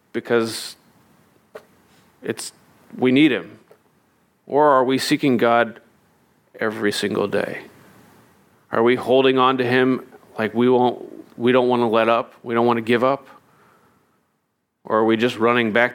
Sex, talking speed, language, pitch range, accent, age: male, 150 wpm, English, 115-135 Hz, American, 40-59